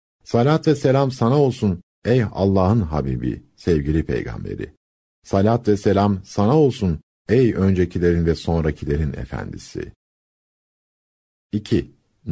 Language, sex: Turkish, male